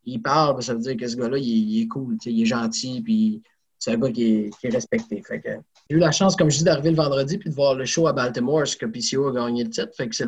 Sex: male